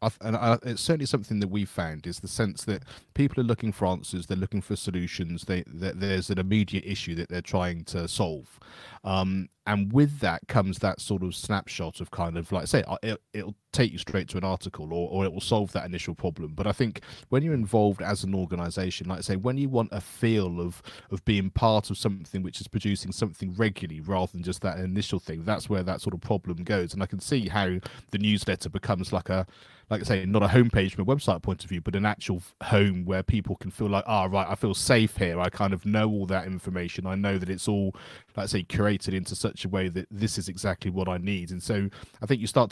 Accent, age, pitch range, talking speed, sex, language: British, 30-49, 95-110 Hz, 245 wpm, male, English